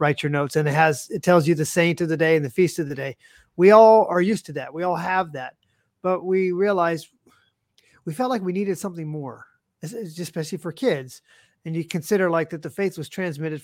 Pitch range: 155-190 Hz